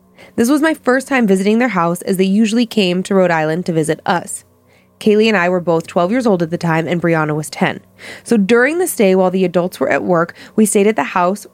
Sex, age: female, 20-39